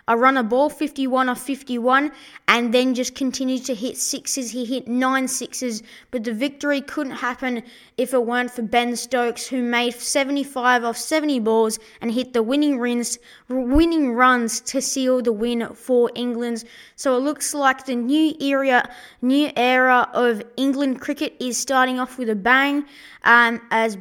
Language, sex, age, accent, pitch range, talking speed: English, female, 20-39, Australian, 240-275 Hz, 170 wpm